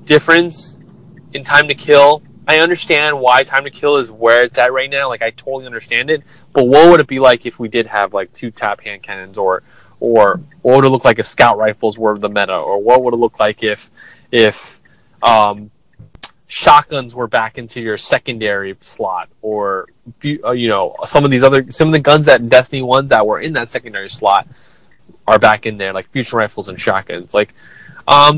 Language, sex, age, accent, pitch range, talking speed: English, male, 20-39, American, 115-155 Hz, 205 wpm